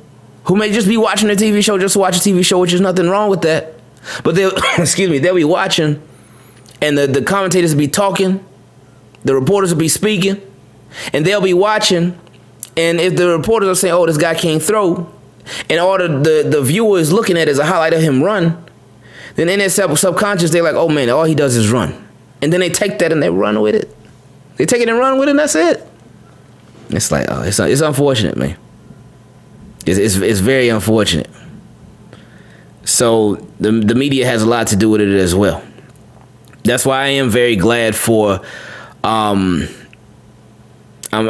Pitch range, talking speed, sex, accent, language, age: 110-175 Hz, 195 wpm, male, American, English, 20-39